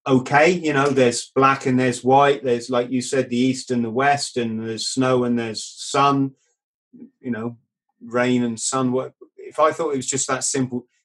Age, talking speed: 30-49, 200 wpm